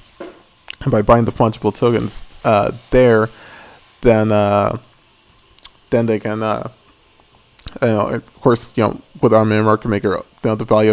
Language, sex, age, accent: English, male, 20-39, American